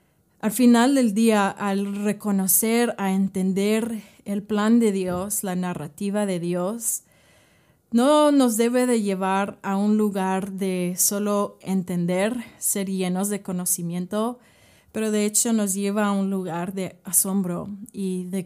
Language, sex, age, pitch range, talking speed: Spanish, female, 30-49, 190-220 Hz, 140 wpm